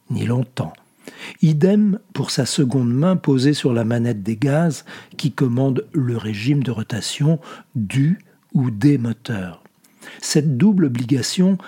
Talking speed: 135 wpm